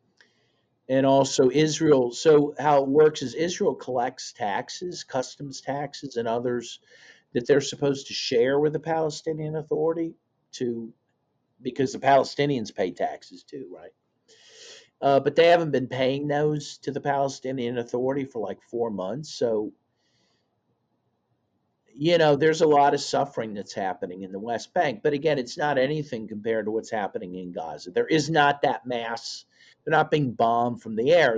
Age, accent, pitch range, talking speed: 50-69, American, 120-150 Hz, 160 wpm